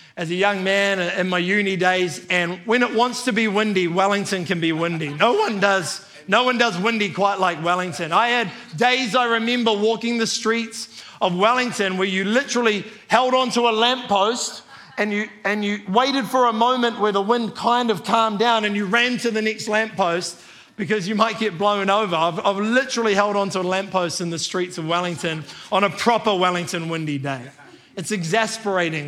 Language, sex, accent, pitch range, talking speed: English, male, Australian, 180-230 Hz, 195 wpm